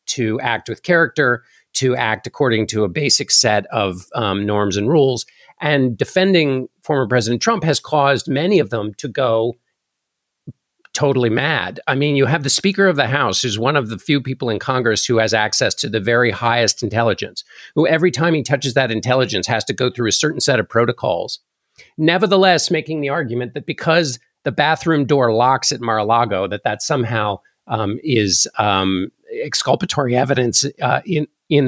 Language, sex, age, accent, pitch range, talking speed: English, male, 50-69, American, 115-155 Hz, 180 wpm